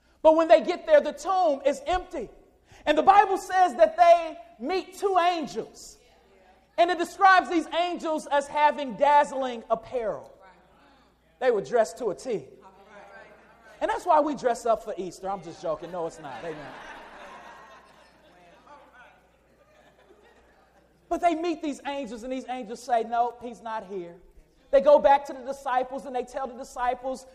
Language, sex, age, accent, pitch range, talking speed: English, male, 30-49, American, 240-330 Hz, 160 wpm